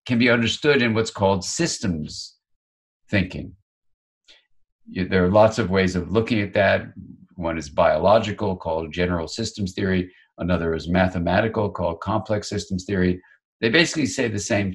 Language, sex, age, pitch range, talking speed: English, male, 50-69, 90-110 Hz, 145 wpm